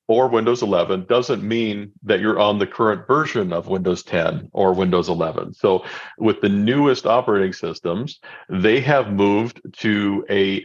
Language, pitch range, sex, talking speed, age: English, 95-125 Hz, male, 160 wpm, 50-69